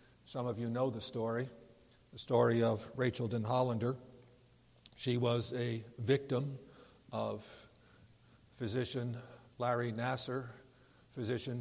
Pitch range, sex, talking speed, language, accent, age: 120-145 Hz, male, 110 wpm, English, American, 60-79